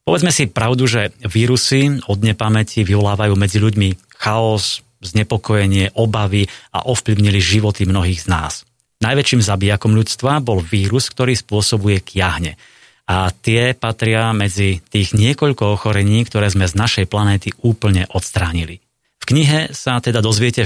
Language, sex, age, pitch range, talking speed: Slovak, male, 30-49, 100-120 Hz, 135 wpm